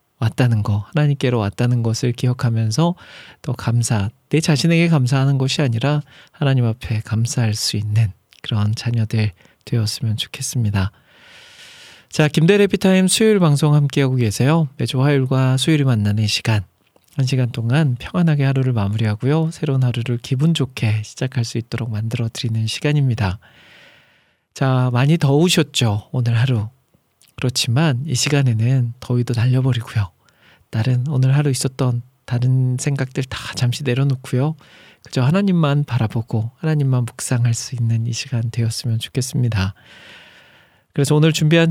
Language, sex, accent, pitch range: Korean, male, native, 115-145 Hz